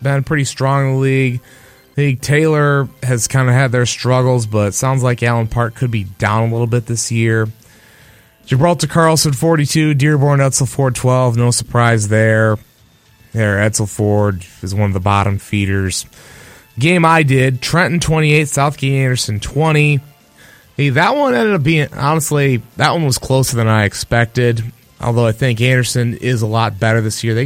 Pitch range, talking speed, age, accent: 110-135 Hz, 175 wpm, 30-49, American